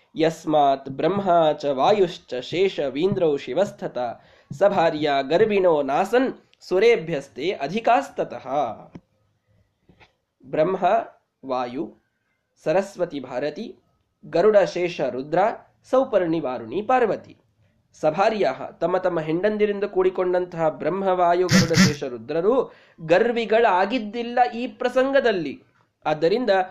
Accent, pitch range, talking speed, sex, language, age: native, 155-230 Hz, 65 wpm, male, Kannada, 20-39